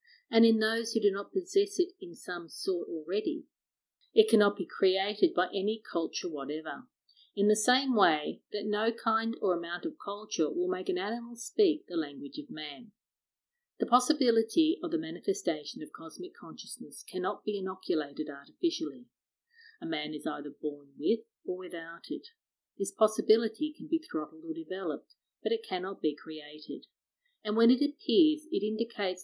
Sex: female